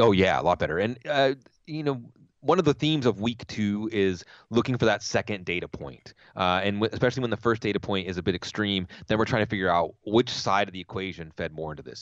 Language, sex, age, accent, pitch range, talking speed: English, male, 30-49, American, 85-115 Hz, 250 wpm